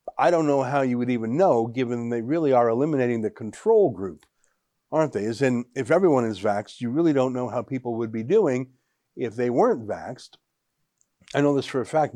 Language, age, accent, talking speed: English, 50-69, American, 210 wpm